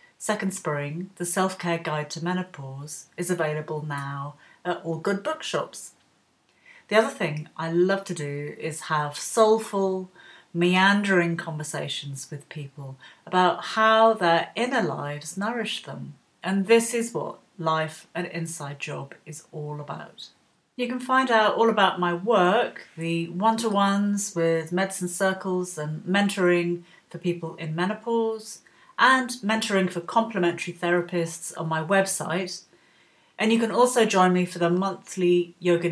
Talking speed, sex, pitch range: 140 wpm, female, 155-195 Hz